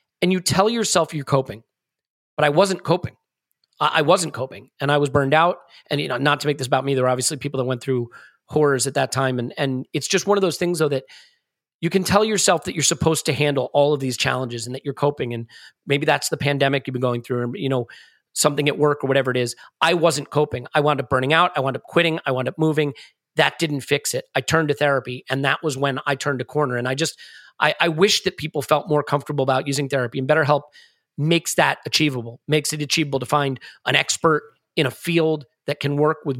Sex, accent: male, American